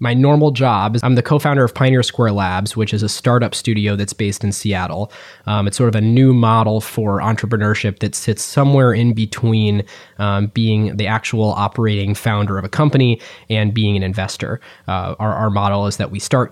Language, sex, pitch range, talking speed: English, male, 100-120 Hz, 200 wpm